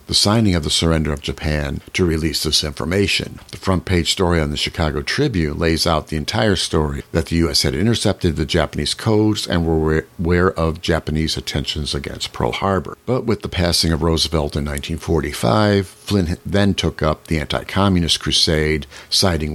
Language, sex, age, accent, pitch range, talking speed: English, male, 60-79, American, 75-95 Hz, 170 wpm